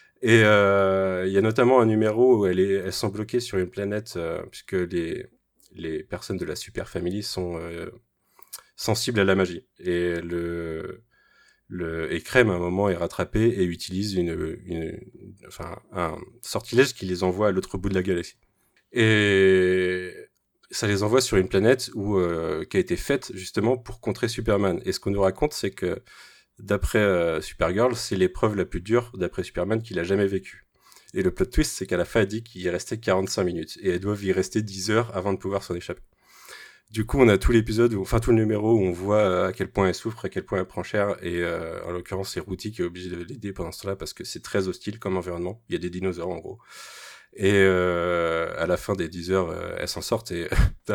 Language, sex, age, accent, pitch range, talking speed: French, male, 30-49, French, 90-110 Hz, 225 wpm